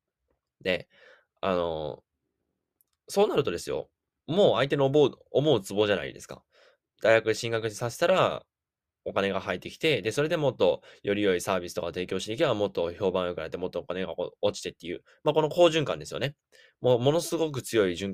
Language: Japanese